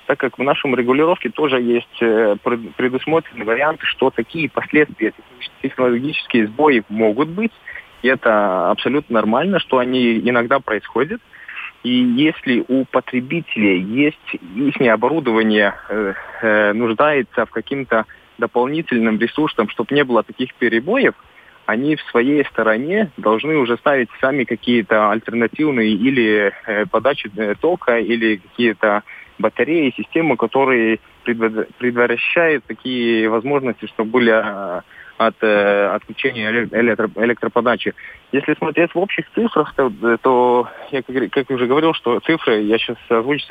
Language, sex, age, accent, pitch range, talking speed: Russian, male, 20-39, native, 115-145 Hz, 115 wpm